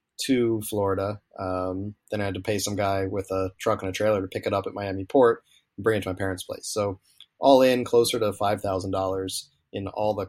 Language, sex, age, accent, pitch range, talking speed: English, male, 30-49, American, 95-120 Hz, 225 wpm